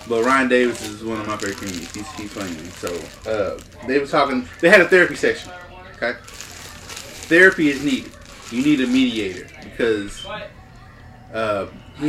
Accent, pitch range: American, 110-150 Hz